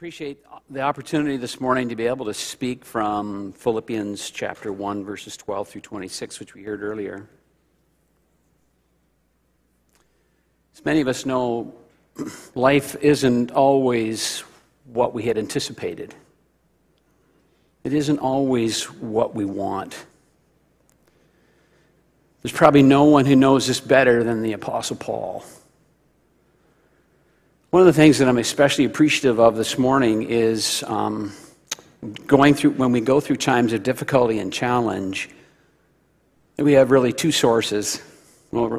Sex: male